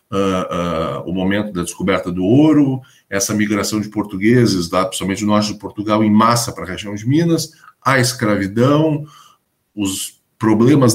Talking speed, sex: 165 wpm, male